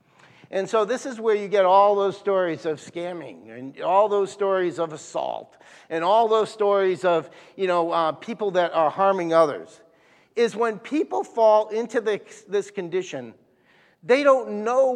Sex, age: male, 50-69